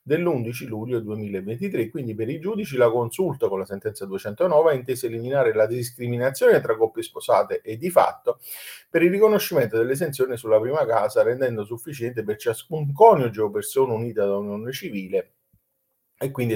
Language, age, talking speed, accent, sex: Italian, 40-59, 155 wpm, native, male